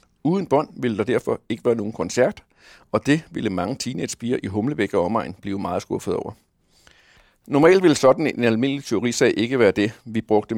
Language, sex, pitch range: Danish, male, 105-135 Hz